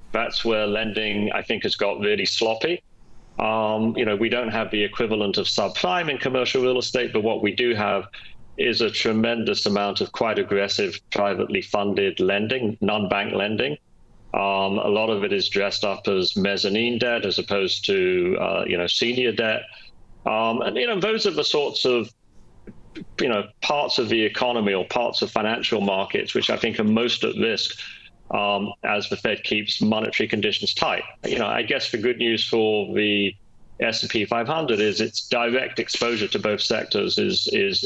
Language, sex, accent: English, male, British